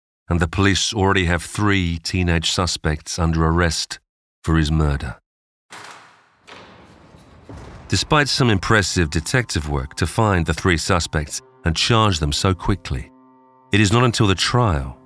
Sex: male